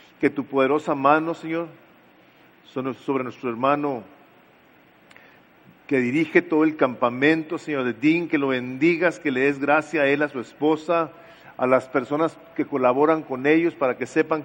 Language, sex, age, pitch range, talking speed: English, male, 40-59, 125-150 Hz, 160 wpm